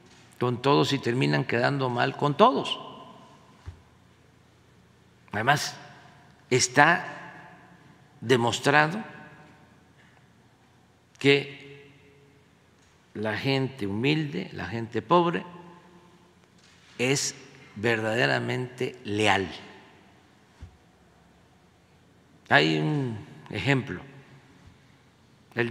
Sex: male